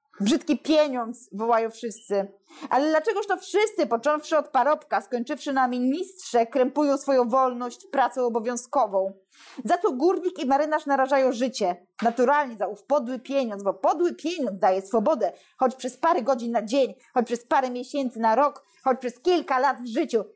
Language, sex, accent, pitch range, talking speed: Polish, female, native, 240-305 Hz, 160 wpm